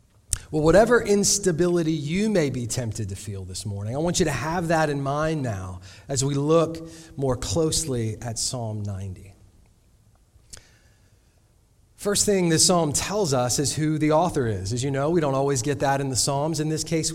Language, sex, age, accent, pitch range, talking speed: English, male, 30-49, American, 105-155 Hz, 185 wpm